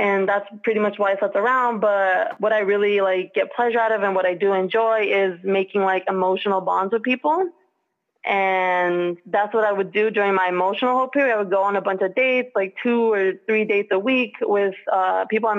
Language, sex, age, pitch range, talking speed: English, female, 20-39, 185-210 Hz, 225 wpm